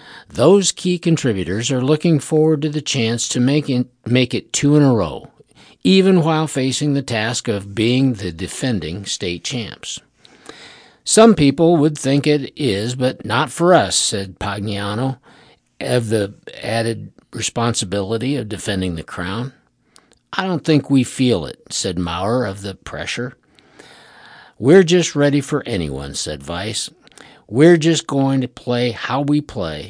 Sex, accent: male, American